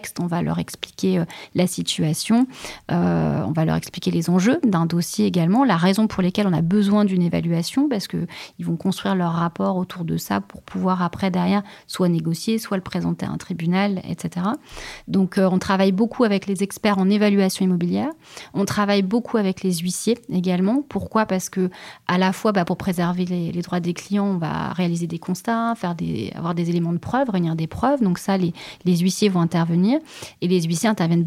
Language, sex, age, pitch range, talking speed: French, female, 30-49, 170-205 Hz, 200 wpm